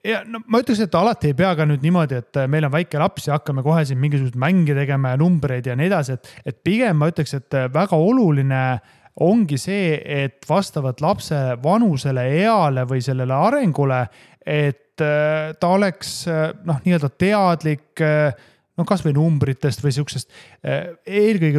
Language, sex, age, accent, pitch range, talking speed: English, male, 30-49, Finnish, 140-185 Hz, 155 wpm